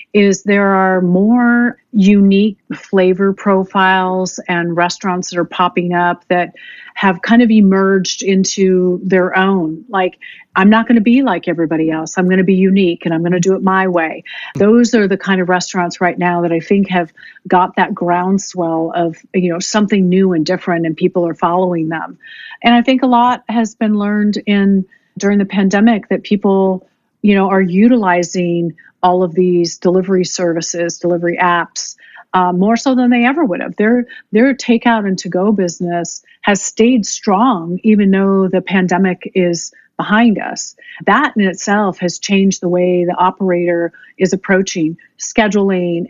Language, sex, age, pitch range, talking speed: English, female, 40-59, 175-210 Hz, 170 wpm